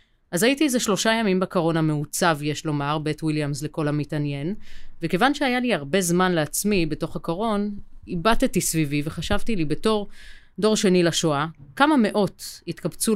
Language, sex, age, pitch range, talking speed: Hebrew, female, 30-49, 155-190 Hz, 145 wpm